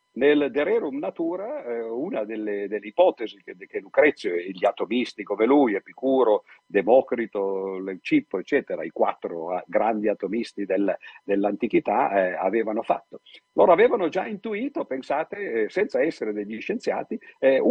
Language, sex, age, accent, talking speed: Italian, male, 50-69, native, 130 wpm